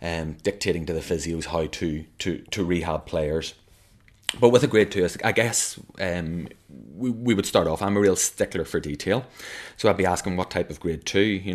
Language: English